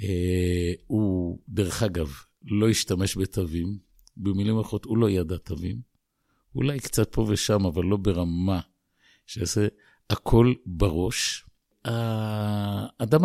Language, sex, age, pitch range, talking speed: Hebrew, male, 50-69, 90-115 Hz, 110 wpm